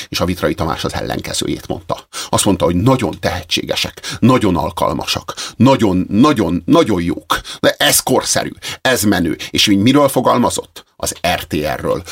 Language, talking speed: Hungarian, 135 wpm